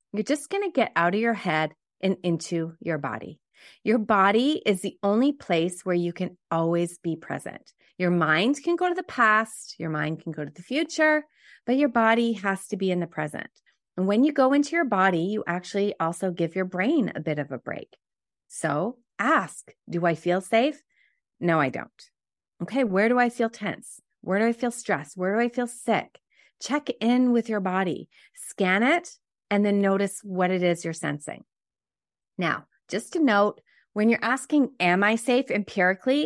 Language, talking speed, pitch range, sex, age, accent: English, 195 wpm, 175-235 Hz, female, 30-49, American